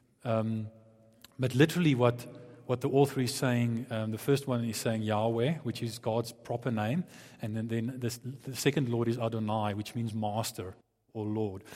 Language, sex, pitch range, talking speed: English, male, 115-145 Hz, 180 wpm